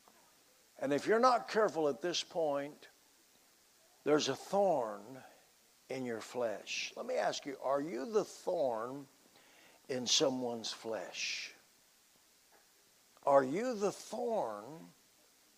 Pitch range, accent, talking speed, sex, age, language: 175-270 Hz, American, 110 wpm, male, 60-79, English